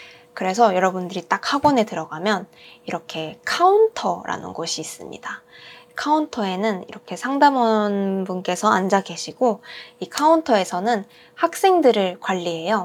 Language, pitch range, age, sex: Korean, 185-250 Hz, 20-39, female